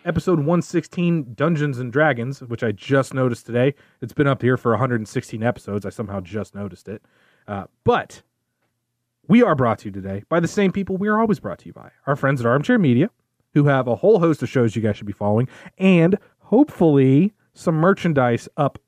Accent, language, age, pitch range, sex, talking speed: American, English, 30-49, 130-170 Hz, male, 200 wpm